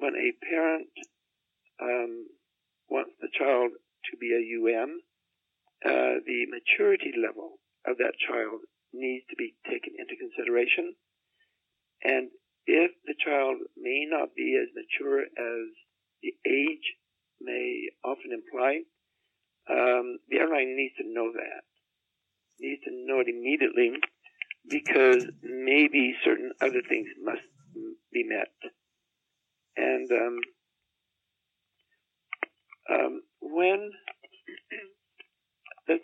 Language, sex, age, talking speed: English, male, 60-79, 105 wpm